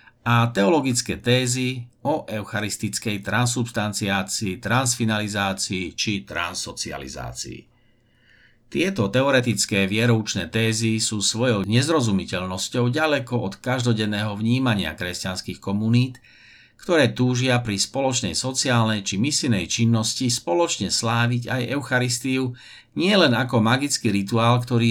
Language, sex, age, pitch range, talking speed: Slovak, male, 50-69, 100-120 Hz, 95 wpm